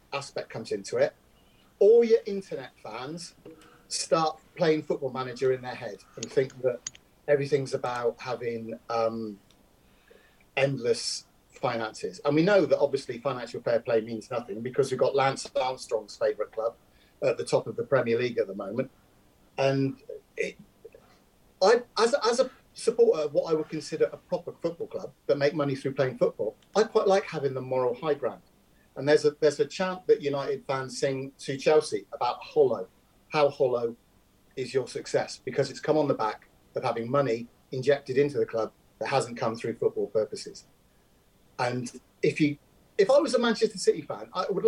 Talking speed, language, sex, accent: 175 wpm, English, male, British